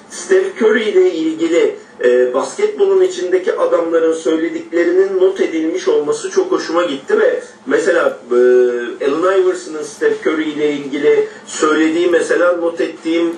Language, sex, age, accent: Turkish, male, 50-69, native